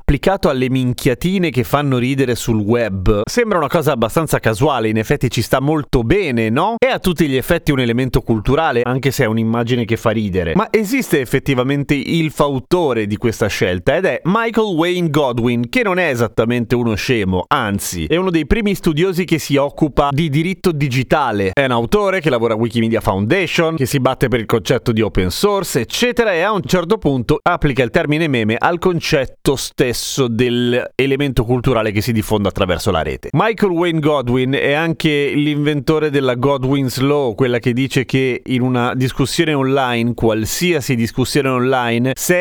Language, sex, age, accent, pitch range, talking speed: Italian, male, 30-49, native, 120-165 Hz, 180 wpm